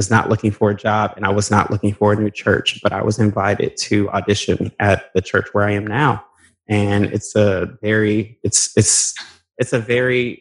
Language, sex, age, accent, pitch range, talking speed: English, male, 20-39, American, 100-110 Hz, 210 wpm